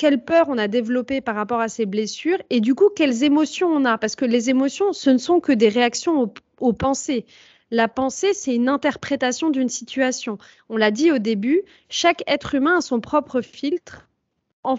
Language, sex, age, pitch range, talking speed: French, female, 30-49, 220-280 Hz, 200 wpm